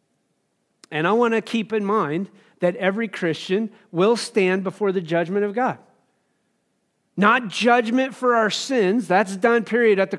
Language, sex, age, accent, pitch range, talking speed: English, male, 40-59, American, 180-225 Hz, 160 wpm